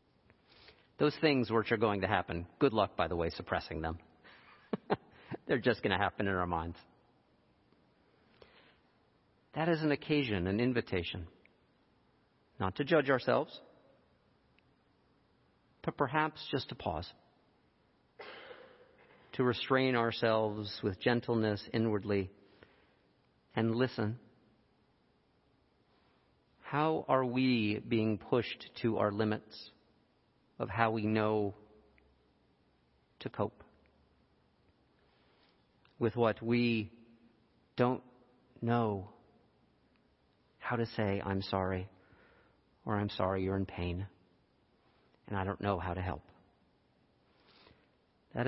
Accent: American